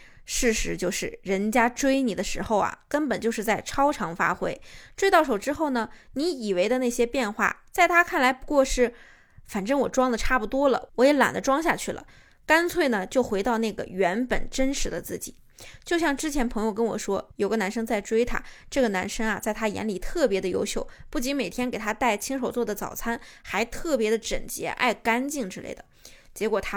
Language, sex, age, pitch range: Chinese, female, 20-39, 215-275 Hz